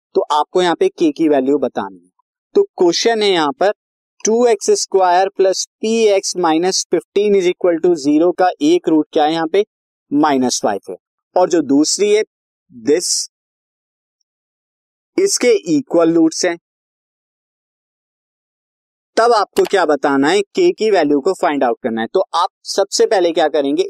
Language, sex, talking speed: Hindi, male, 160 wpm